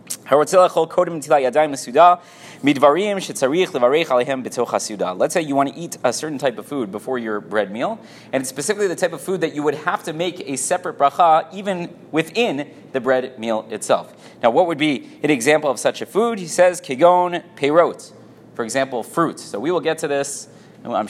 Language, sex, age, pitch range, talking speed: English, male, 30-49, 125-165 Hz, 170 wpm